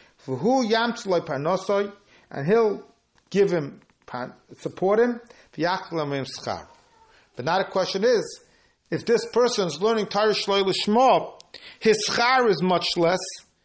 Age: 50-69